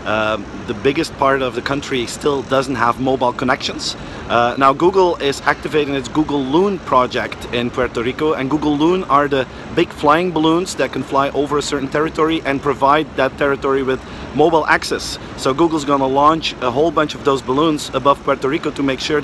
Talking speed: 195 wpm